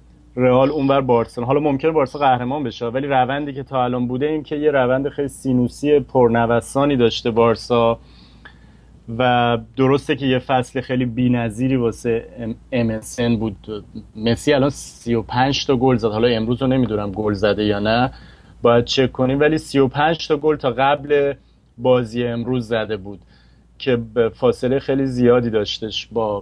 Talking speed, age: 150 wpm, 30-49